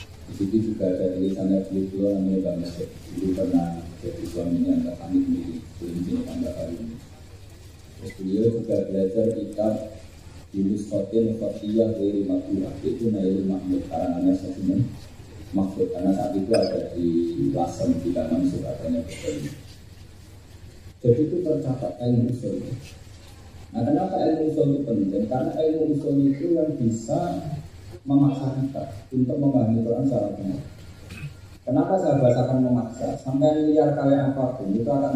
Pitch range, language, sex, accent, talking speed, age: 95-125 Hz, Indonesian, male, native, 105 wpm, 40-59